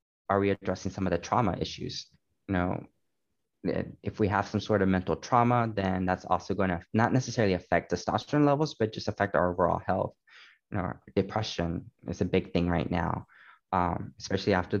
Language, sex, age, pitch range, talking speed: English, male, 20-39, 90-105 Hz, 180 wpm